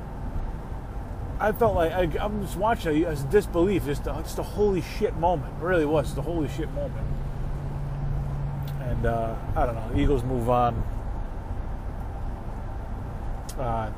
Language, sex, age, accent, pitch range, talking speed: English, male, 30-49, American, 115-150 Hz, 155 wpm